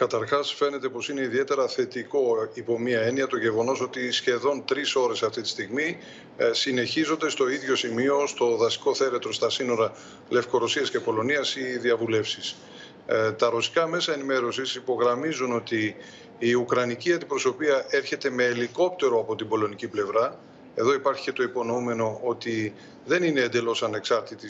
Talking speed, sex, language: 140 wpm, male, Greek